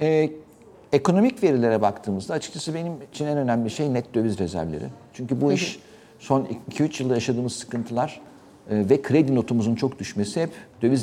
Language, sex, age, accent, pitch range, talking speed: Turkish, male, 50-69, native, 105-145 Hz, 150 wpm